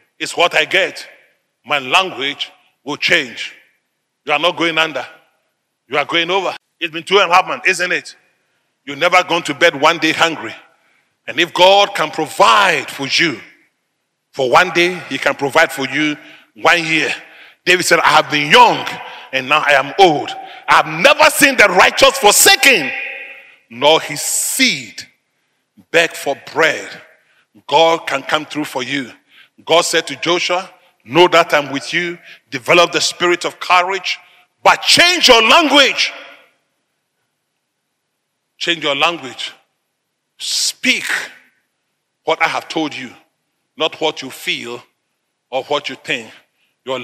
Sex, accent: male, Nigerian